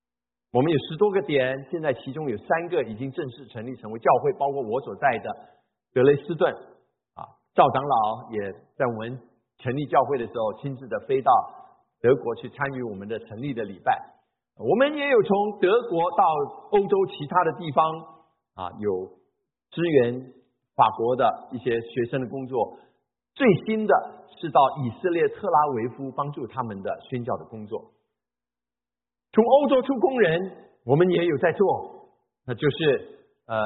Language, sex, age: Chinese, male, 50-69